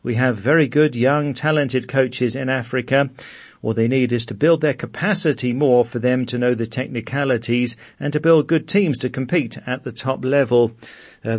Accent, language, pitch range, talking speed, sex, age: British, English, 120-155 Hz, 190 wpm, male, 40-59